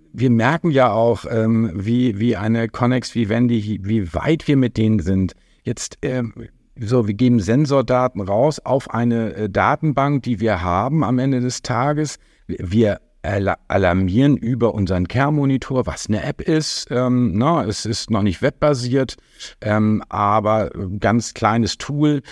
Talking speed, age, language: 140 wpm, 50-69, German